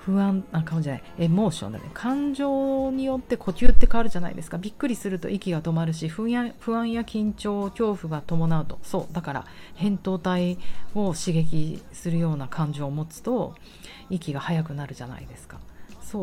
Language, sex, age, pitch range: Japanese, female, 40-59, 155-235 Hz